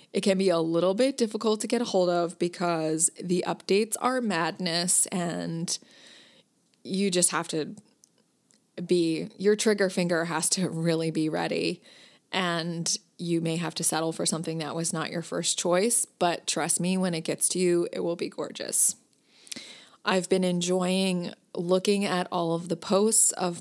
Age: 20-39